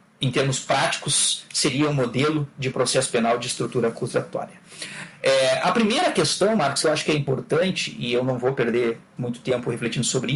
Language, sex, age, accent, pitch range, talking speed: Portuguese, male, 40-59, Brazilian, 135-195 Hz, 175 wpm